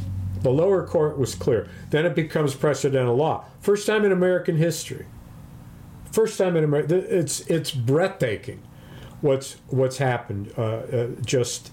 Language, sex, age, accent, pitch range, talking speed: English, male, 50-69, American, 130-190 Hz, 145 wpm